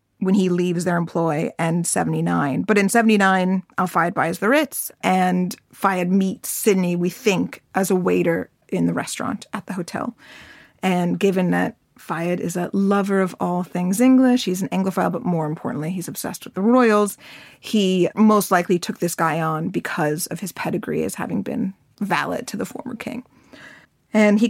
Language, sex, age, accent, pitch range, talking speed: English, female, 30-49, American, 180-215 Hz, 175 wpm